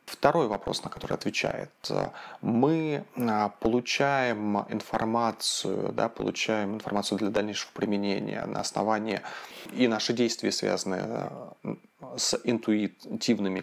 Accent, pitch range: native, 105-130 Hz